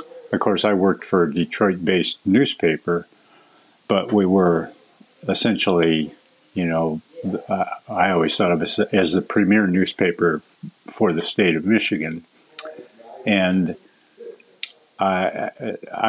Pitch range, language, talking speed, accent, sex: 85-100 Hz, English, 115 wpm, American, male